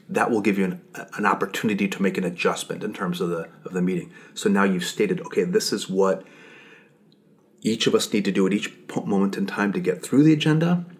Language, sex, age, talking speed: English, male, 30-49, 230 wpm